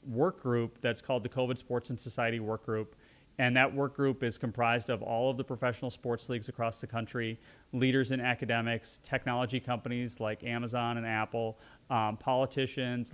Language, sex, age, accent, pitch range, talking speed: English, male, 30-49, American, 120-135 Hz, 175 wpm